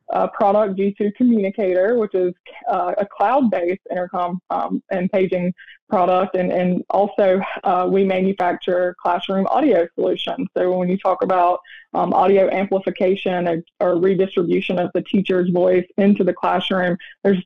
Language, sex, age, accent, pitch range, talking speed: English, female, 20-39, American, 180-215 Hz, 145 wpm